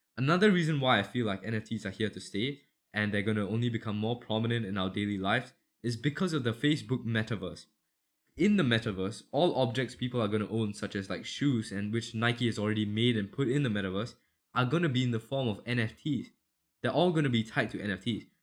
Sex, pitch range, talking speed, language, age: male, 105-125 Hz, 230 wpm, English, 10-29